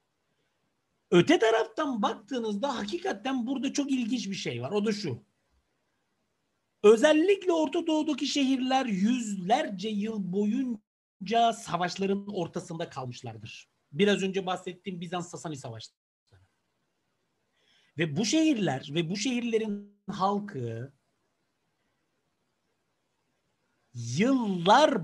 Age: 60-79